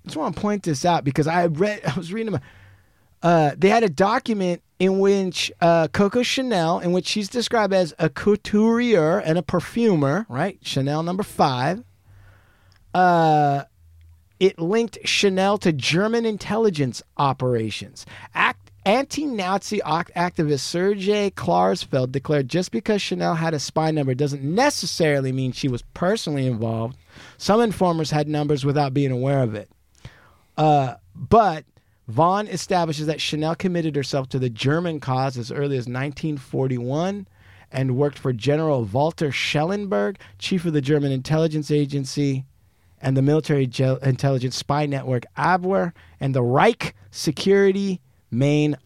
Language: English